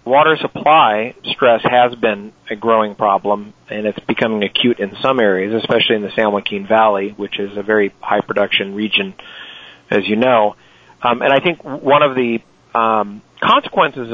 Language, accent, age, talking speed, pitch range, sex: English, American, 40-59, 165 wpm, 110-130 Hz, male